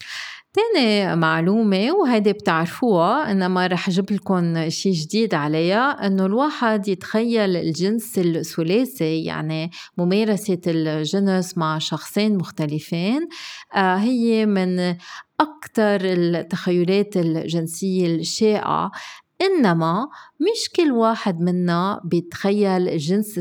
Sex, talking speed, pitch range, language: female, 90 wpm, 175-220 Hz, Arabic